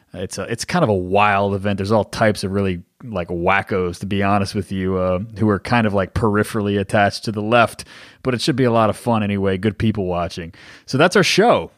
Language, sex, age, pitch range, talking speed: English, male, 30-49, 105-130 Hz, 240 wpm